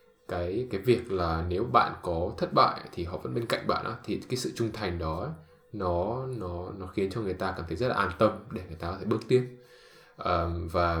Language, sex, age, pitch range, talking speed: English, male, 10-29, 85-105 Hz, 235 wpm